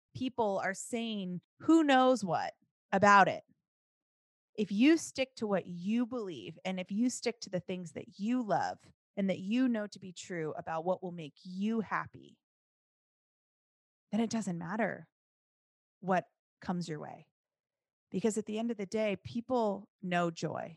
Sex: female